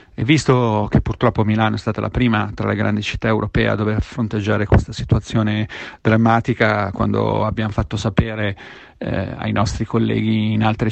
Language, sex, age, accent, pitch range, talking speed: Italian, male, 40-59, native, 105-115 Hz, 165 wpm